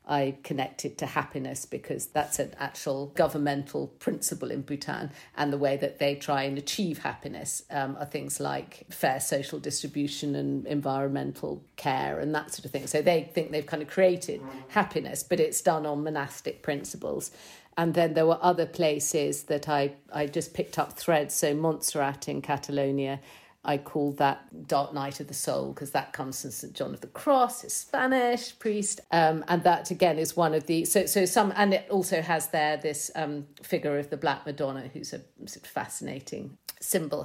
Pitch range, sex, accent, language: 140-165 Hz, female, British, English